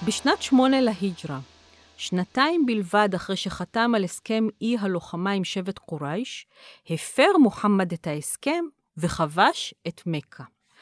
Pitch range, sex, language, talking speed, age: 170-230 Hz, female, Hebrew, 115 wpm, 40-59